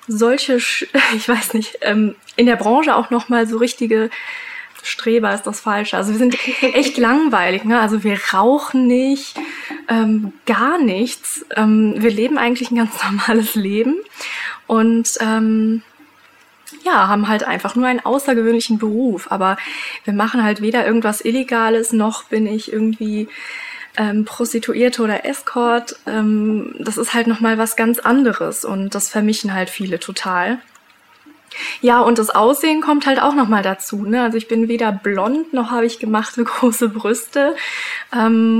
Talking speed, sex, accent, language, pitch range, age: 150 wpm, female, German, German, 220-255 Hz, 10-29